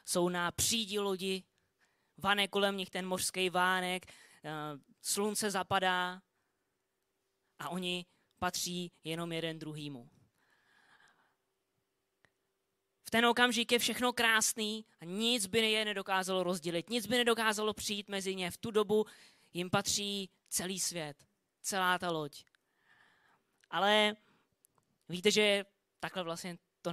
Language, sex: Czech, female